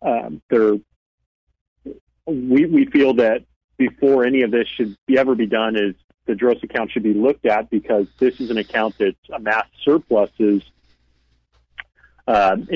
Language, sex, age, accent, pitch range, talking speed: English, male, 40-59, American, 105-130 Hz, 150 wpm